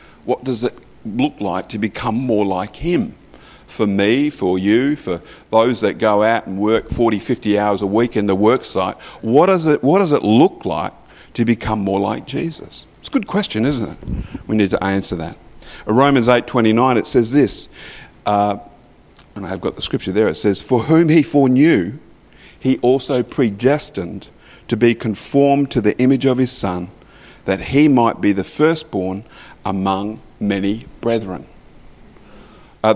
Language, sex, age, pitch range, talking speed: English, male, 50-69, 100-125 Hz, 170 wpm